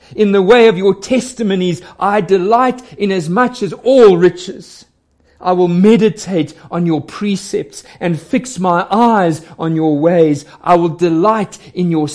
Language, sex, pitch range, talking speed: English, male, 110-175 Hz, 160 wpm